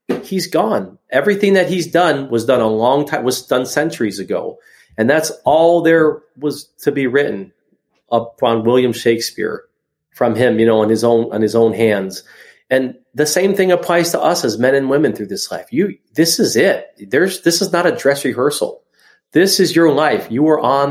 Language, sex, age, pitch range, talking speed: English, male, 40-59, 115-155 Hz, 200 wpm